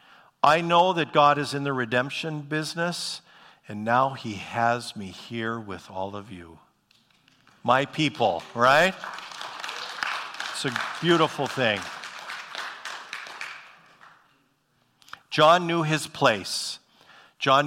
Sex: male